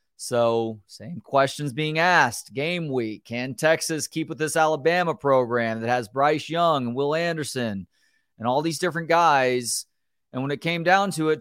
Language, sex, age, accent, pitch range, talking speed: English, male, 30-49, American, 125-155 Hz, 175 wpm